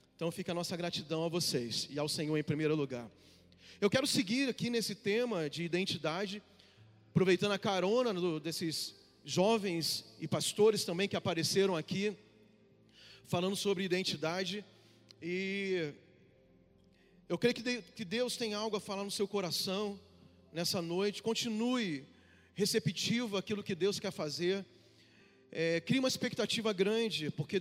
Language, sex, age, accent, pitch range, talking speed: Portuguese, male, 40-59, Brazilian, 160-215 Hz, 140 wpm